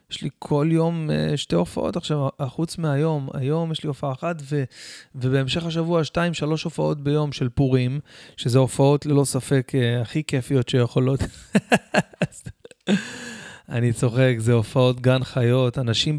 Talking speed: 135 wpm